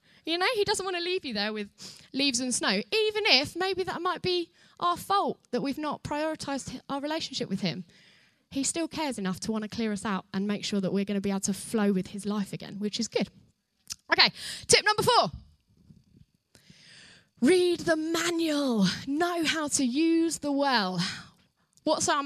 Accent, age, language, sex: British, 10-29, English, female